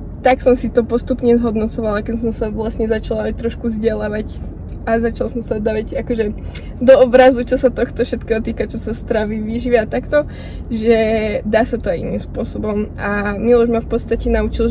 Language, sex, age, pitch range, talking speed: Slovak, female, 20-39, 230-255 Hz, 185 wpm